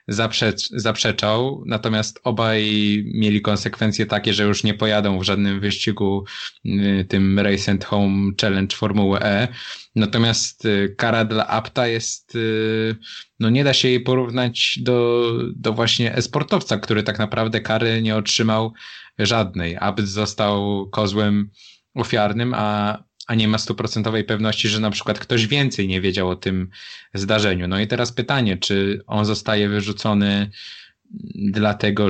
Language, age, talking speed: Polish, 20-39, 135 wpm